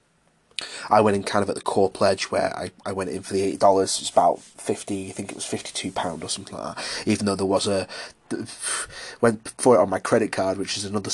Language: English